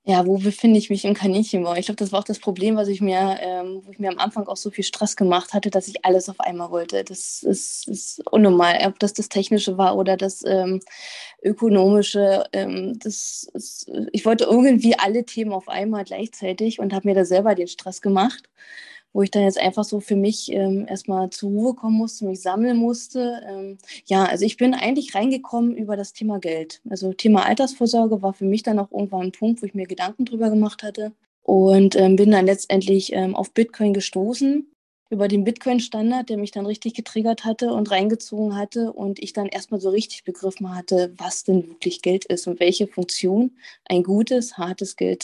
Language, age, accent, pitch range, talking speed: German, 20-39, German, 190-215 Hz, 205 wpm